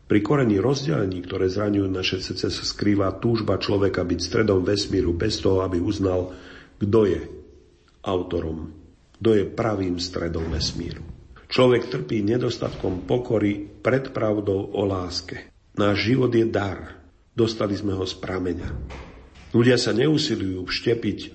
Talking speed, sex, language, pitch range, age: 130 wpm, male, Slovak, 90-105 Hz, 50-69